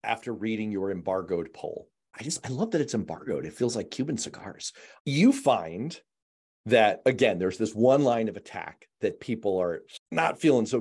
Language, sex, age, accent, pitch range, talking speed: English, male, 40-59, American, 95-130 Hz, 185 wpm